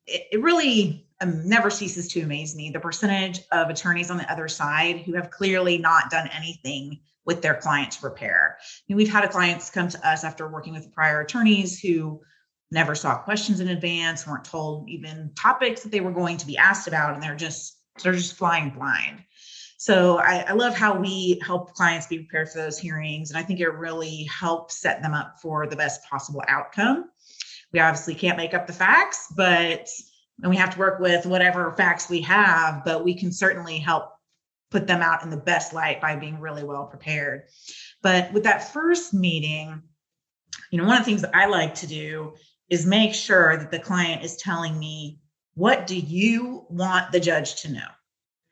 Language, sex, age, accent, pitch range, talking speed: English, female, 30-49, American, 155-185 Hz, 195 wpm